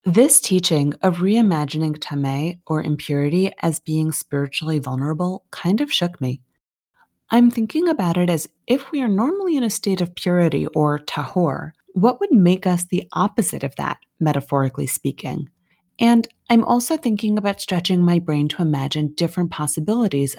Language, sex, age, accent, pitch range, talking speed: English, female, 30-49, American, 150-195 Hz, 155 wpm